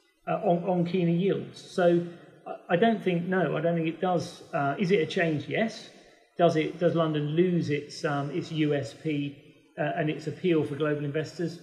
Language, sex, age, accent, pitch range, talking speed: English, male, 40-59, British, 145-170 Hz, 190 wpm